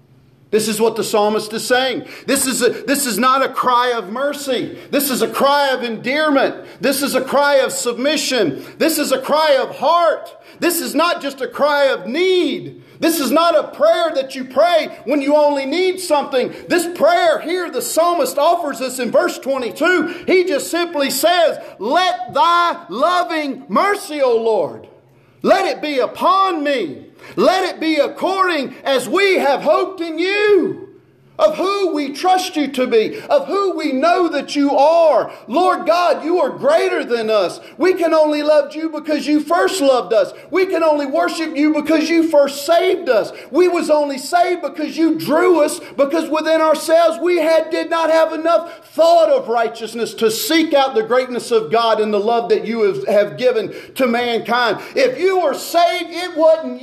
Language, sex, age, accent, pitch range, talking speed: English, male, 40-59, American, 270-335 Hz, 185 wpm